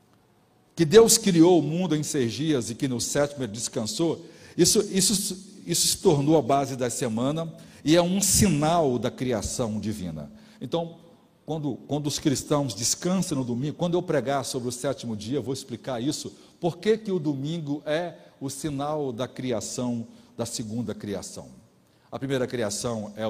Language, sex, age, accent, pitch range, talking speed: Portuguese, male, 60-79, Brazilian, 120-170 Hz, 165 wpm